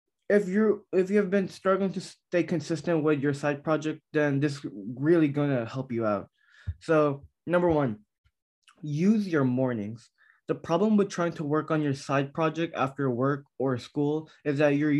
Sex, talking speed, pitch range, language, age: male, 175 wpm, 130-170 Hz, English, 20-39